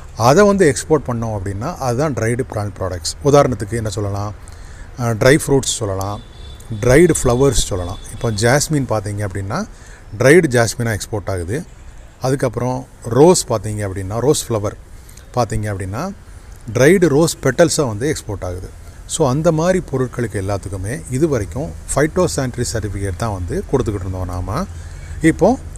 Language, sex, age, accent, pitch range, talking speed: Tamil, male, 30-49, native, 100-145 Hz, 125 wpm